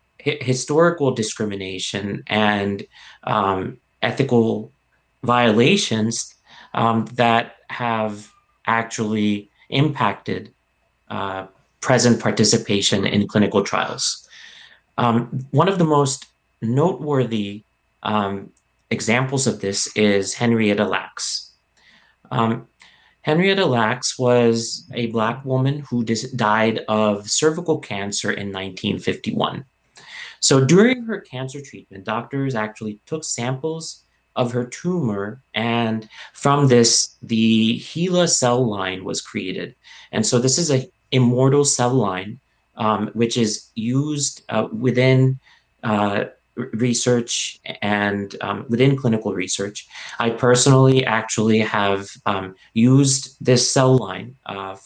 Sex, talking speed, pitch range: male, 105 wpm, 105-130 Hz